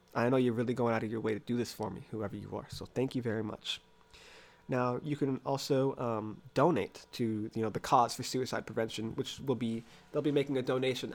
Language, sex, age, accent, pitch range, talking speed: English, male, 20-39, American, 115-140 Hz, 235 wpm